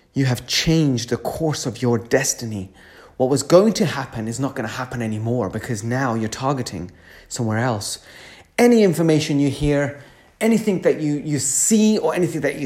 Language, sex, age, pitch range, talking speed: English, male, 30-49, 120-150 Hz, 180 wpm